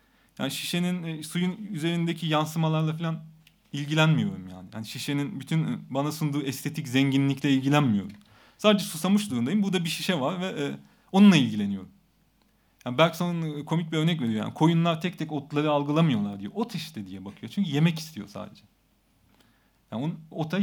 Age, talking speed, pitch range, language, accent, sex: 40-59, 150 wpm, 130-170 Hz, Turkish, native, male